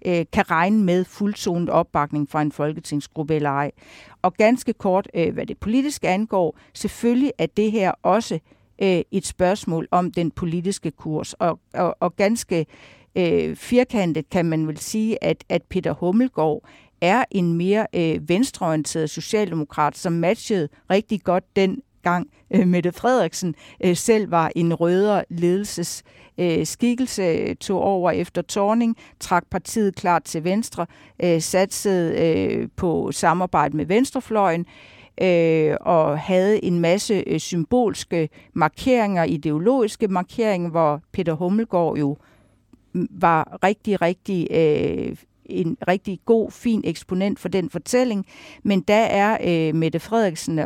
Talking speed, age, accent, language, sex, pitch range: 115 wpm, 50-69, native, Danish, female, 160-205 Hz